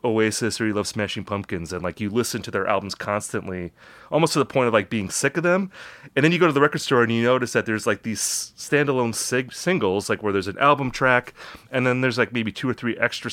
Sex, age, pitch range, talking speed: male, 30-49, 105-130 Hz, 255 wpm